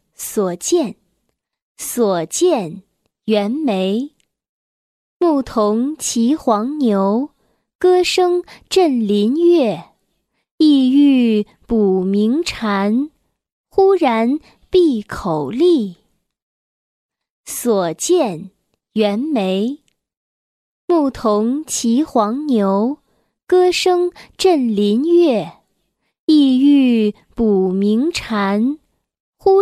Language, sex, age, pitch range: Chinese, female, 20-39, 210-315 Hz